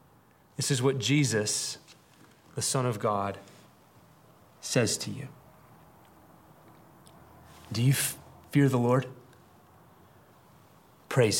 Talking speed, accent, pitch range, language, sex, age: 90 wpm, American, 125-160 Hz, English, male, 30-49